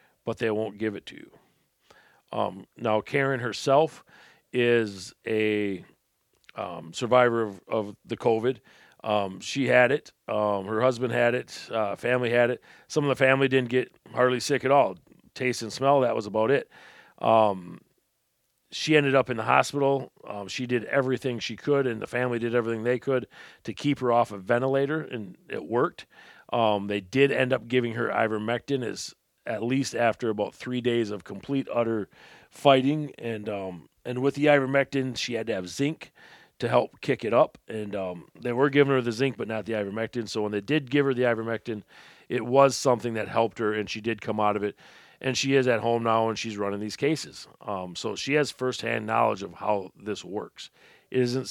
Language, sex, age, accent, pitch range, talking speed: English, male, 40-59, American, 110-130 Hz, 195 wpm